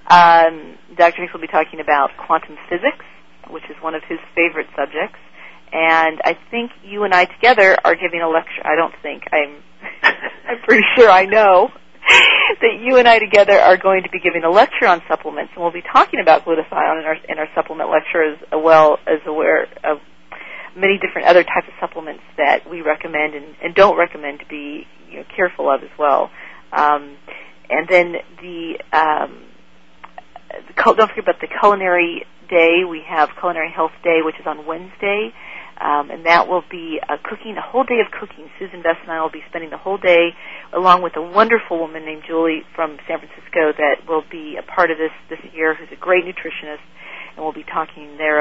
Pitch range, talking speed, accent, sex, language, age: 155-185 Hz, 190 wpm, American, female, English, 40-59